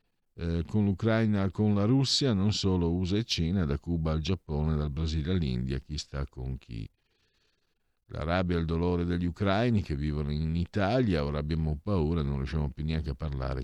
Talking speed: 190 wpm